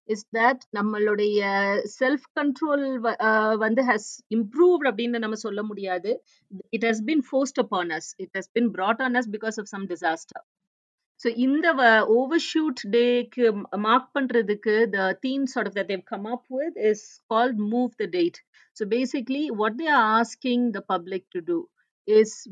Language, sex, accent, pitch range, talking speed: Tamil, female, native, 200-255 Hz, 160 wpm